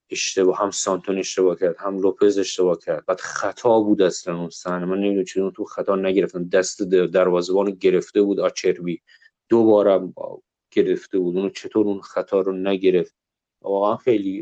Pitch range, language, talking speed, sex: 95-110 Hz, Persian, 160 wpm, male